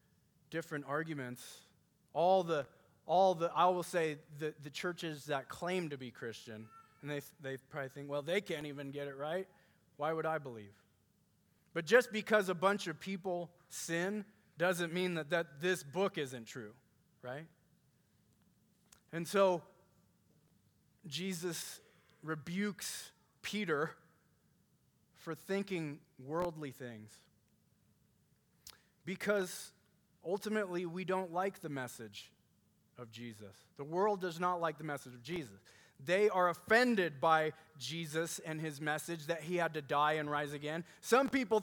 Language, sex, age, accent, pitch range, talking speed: English, male, 20-39, American, 150-200 Hz, 135 wpm